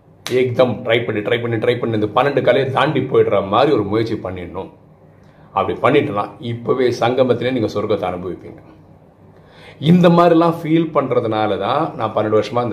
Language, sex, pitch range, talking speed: Tamil, male, 110-155 Hz, 145 wpm